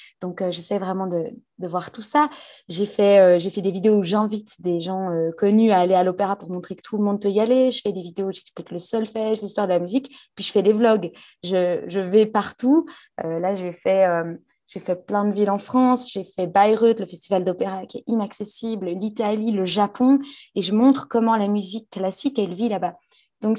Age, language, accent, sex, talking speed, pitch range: 20-39, French, French, female, 230 wpm, 185-235 Hz